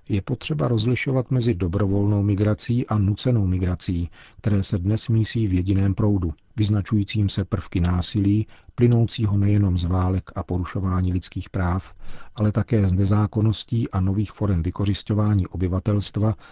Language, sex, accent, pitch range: Czech, male, native, 95-110 Hz